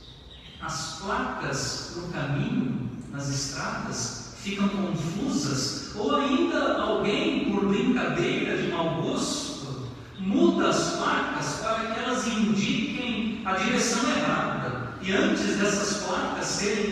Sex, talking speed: male, 110 wpm